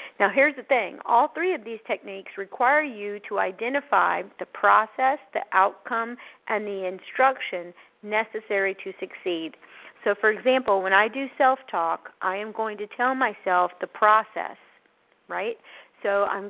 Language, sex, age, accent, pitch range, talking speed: English, female, 40-59, American, 190-225 Hz, 150 wpm